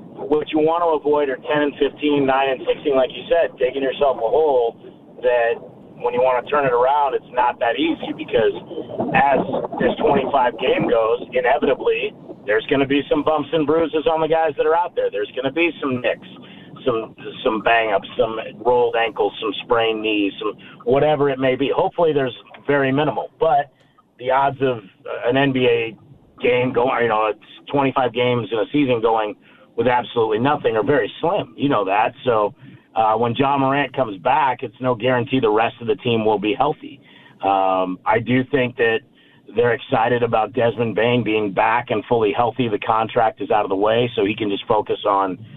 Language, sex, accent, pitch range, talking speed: English, male, American, 115-155 Hz, 200 wpm